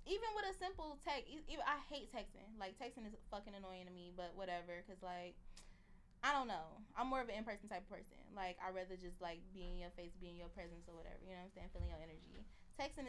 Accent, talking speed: American, 250 wpm